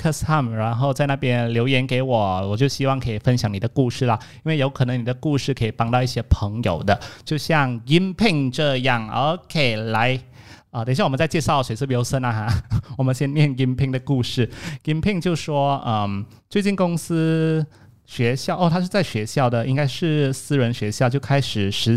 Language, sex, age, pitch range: Chinese, male, 30-49, 115-145 Hz